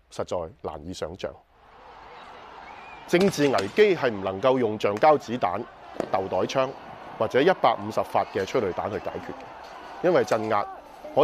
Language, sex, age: Chinese, male, 30-49